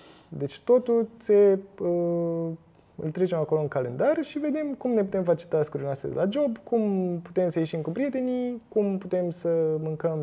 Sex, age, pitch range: male, 20-39, 145-215 Hz